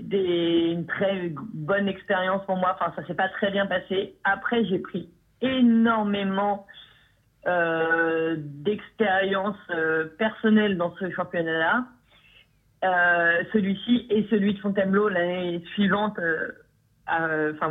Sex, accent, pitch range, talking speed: female, French, 180-225 Hz, 130 wpm